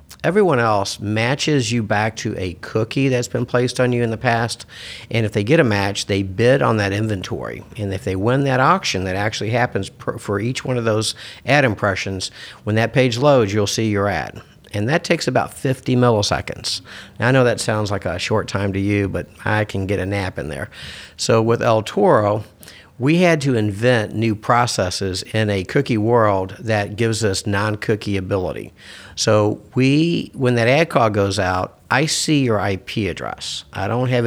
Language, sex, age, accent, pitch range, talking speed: English, male, 50-69, American, 100-125 Hz, 195 wpm